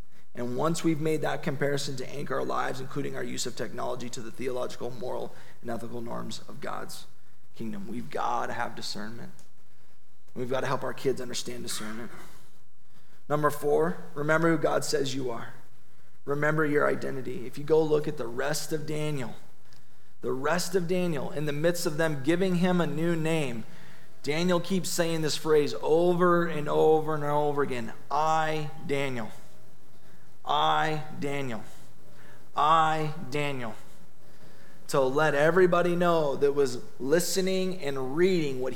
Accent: American